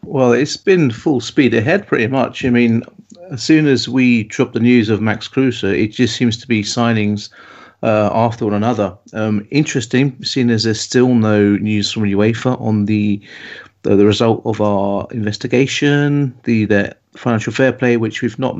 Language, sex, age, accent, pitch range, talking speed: English, male, 40-59, British, 110-120 Hz, 180 wpm